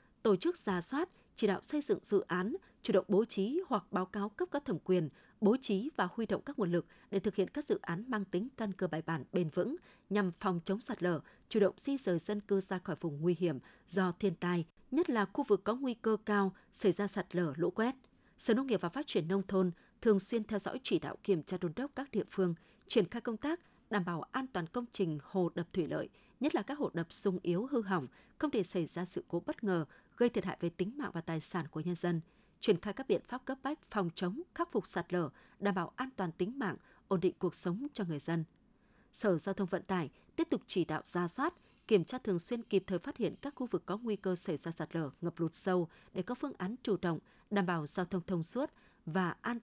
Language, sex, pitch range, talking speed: Vietnamese, female, 175-230 Hz, 255 wpm